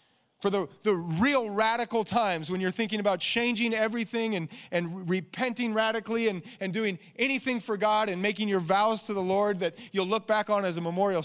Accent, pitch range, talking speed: American, 135-205 Hz, 195 wpm